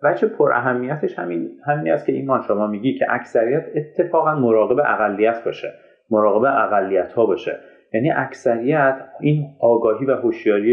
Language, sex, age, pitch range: Persian, male, 30-49, 105-150 Hz